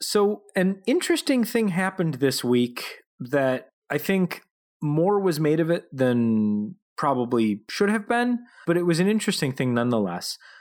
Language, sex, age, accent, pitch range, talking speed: English, male, 30-49, American, 110-145 Hz, 155 wpm